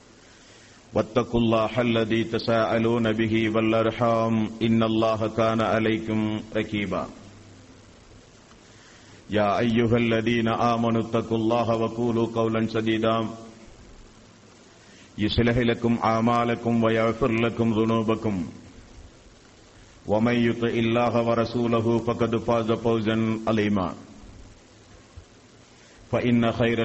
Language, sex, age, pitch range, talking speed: Tamil, male, 50-69, 110-120 Hz, 80 wpm